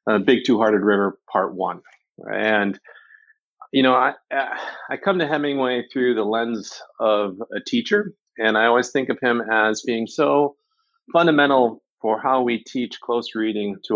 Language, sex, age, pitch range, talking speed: English, male, 40-59, 110-140 Hz, 160 wpm